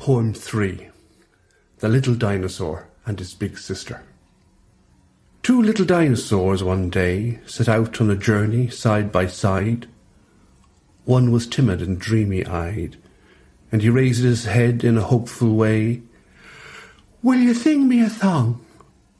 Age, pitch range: 60-79, 100-145 Hz